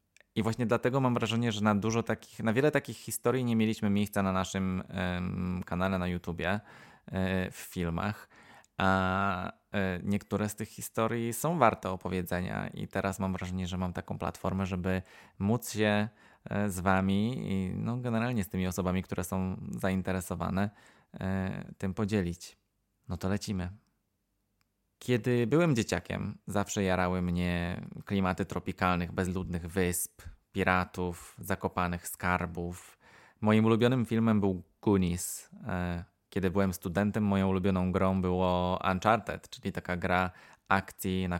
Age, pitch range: 20-39, 90-105 Hz